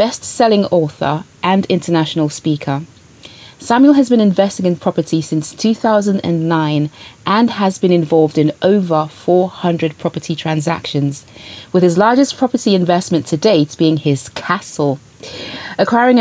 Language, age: English, 30-49